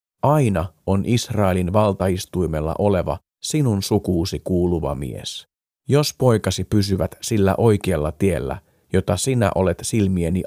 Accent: native